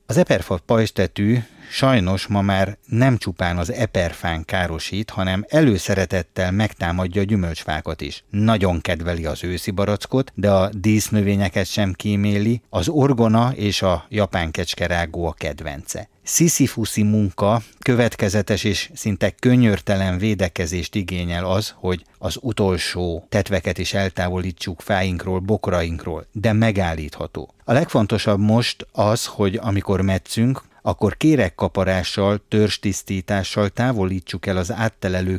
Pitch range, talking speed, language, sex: 95-110 Hz, 115 wpm, Hungarian, male